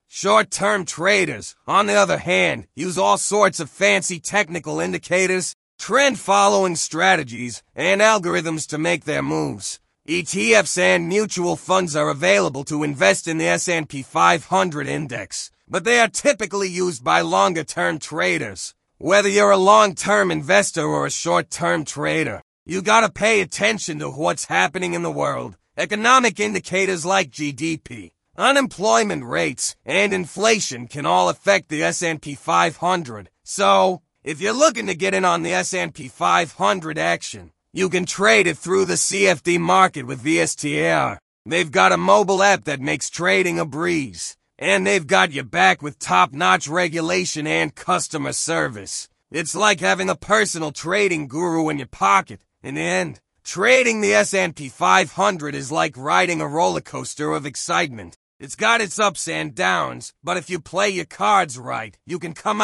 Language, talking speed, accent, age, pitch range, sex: English, 150 wpm, American, 30-49, 150-195 Hz, male